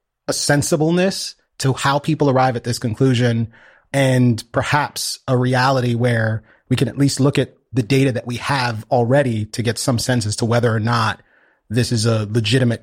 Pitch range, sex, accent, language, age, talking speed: 115-135 Hz, male, American, English, 30-49, 180 wpm